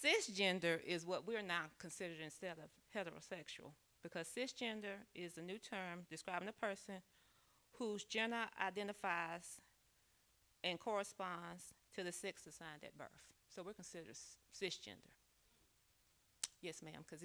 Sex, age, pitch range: female, 40-59, 155-195 Hz